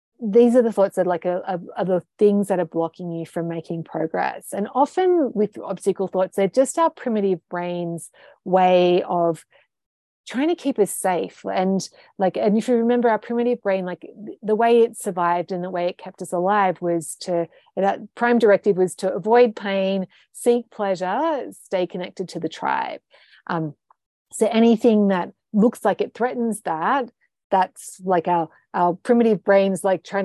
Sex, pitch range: female, 175-220 Hz